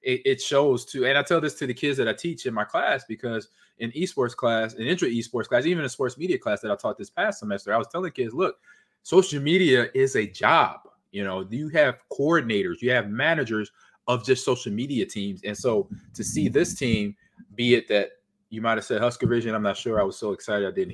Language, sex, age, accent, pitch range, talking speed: English, male, 20-39, American, 110-140 Hz, 240 wpm